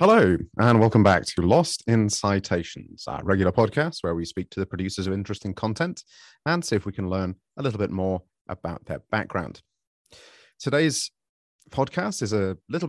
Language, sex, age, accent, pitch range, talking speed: English, male, 30-49, British, 95-115 Hz, 175 wpm